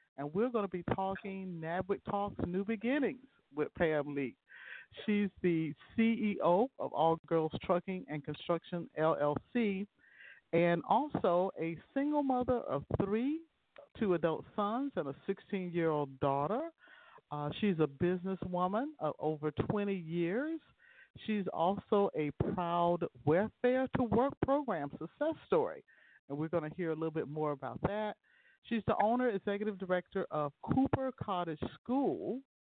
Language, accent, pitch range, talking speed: English, American, 155-220 Hz, 130 wpm